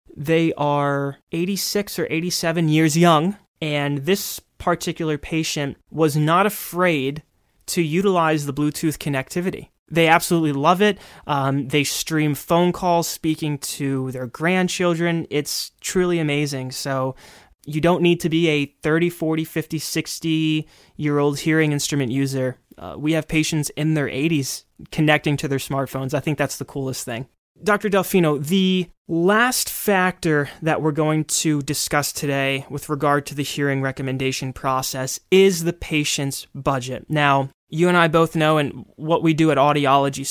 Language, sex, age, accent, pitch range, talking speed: English, male, 20-39, American, 140-170 Hz, 150 wpm